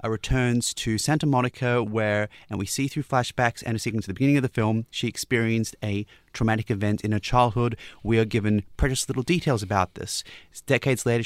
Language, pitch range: English, 105-130 Hz